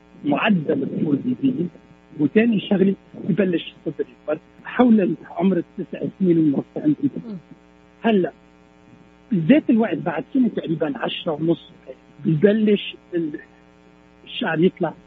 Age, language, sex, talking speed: 60-79, Arabic, male, 90 wpm